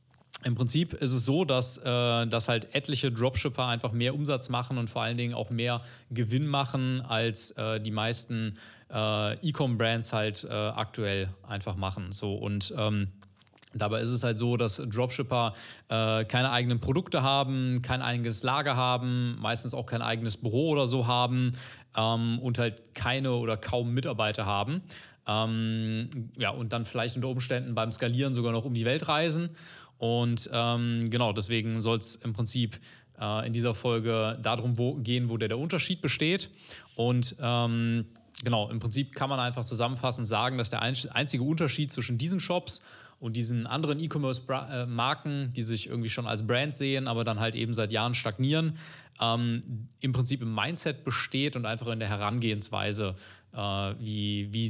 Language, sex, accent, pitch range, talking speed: German, male, German, 110-130 Hz, 165 wpm